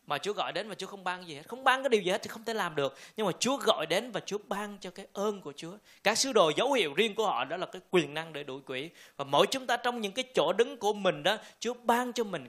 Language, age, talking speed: Vietnamese, 20-39, 315 wpm